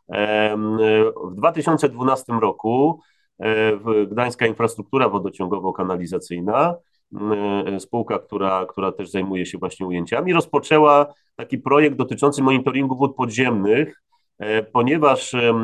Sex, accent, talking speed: male, native, 85 wpm